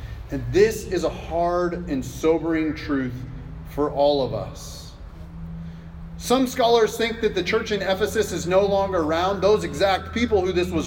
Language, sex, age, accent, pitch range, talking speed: English, male, 30-49, American, 145-215 Hz, 165 wpm